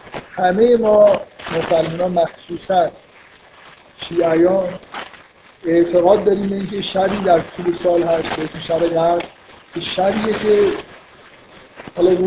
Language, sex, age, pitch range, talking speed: Persian, male, 50-69, 165-195 Hz, 100 wpm